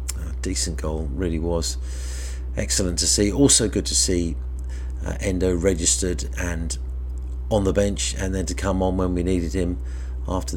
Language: English